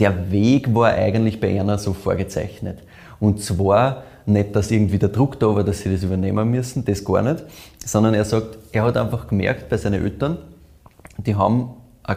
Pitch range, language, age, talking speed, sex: 100-115 Hz, German, 20-39, 185 wpm, male